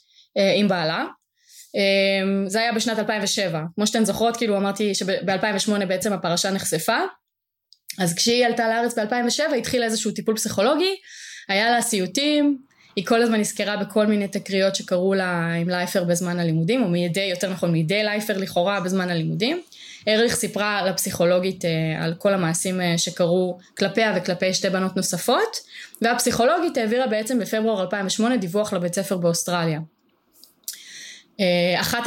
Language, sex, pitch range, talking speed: Hebrew, female, 180-225 Hz, 135 wpm